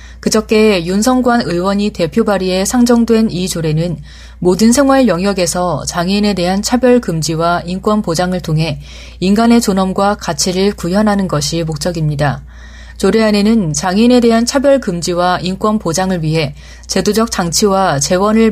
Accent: native